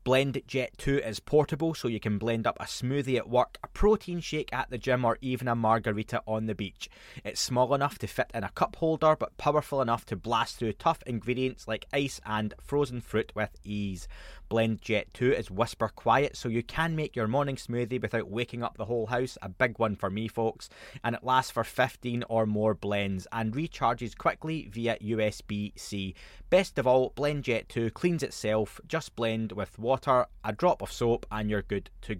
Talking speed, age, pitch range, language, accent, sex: 205 wpm, 20-39, 110-135 Hz, English, British, male